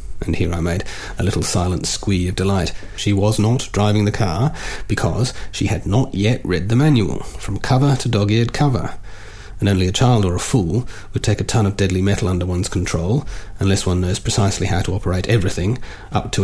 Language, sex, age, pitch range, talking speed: English, male, 40-59, 95-110 Hz, 205 wpm